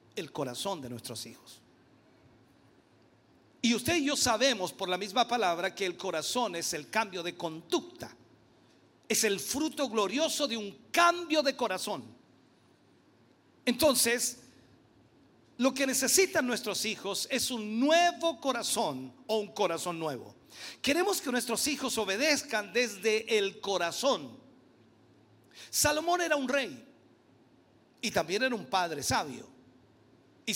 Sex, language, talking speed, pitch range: male, Spanish, 125 wpm, 175-270 Hz